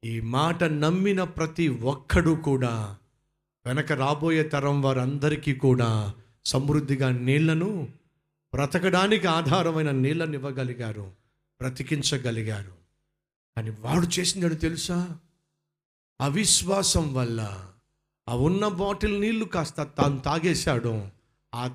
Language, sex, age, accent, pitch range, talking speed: Telugu, male, 50-69, native, 125-170 Hz, 90 wpm